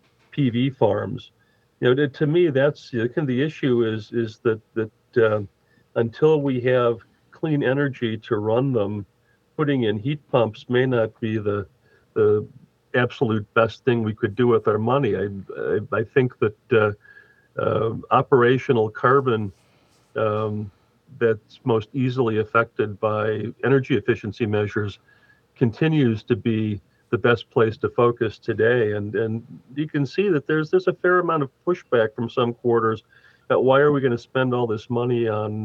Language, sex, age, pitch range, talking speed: English, male, 50-69, 110-130 Hz, 160 wpm